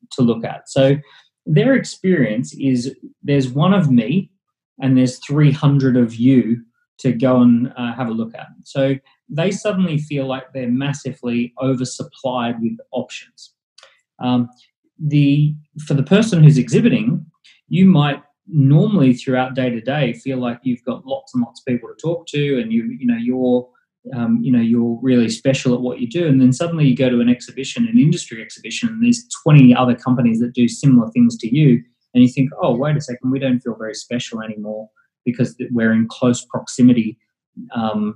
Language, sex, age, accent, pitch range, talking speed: English, male, 20-39, Australian, 120-165 Hz, 180 wpm